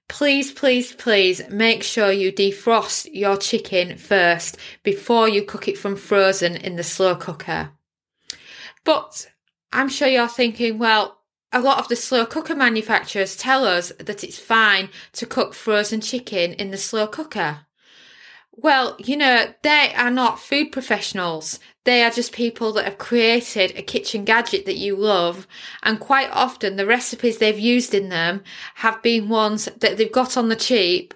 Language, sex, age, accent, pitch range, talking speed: English, female, 20-39, British, 185-235 Hz, 165 wpm